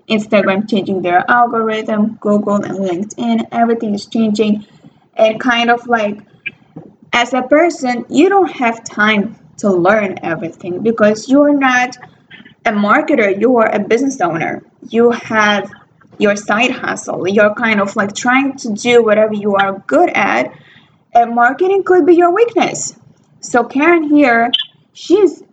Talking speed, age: 140 wpm, 20-39